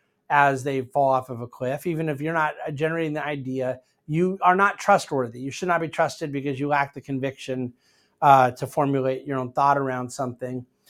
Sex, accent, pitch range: male, American, 135-160 Hz